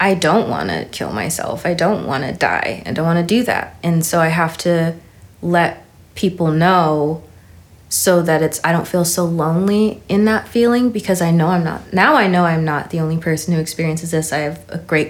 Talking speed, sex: 225 wpm, female